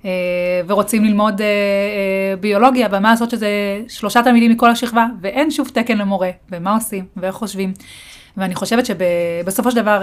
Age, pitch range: 30-49, 185-230 Hz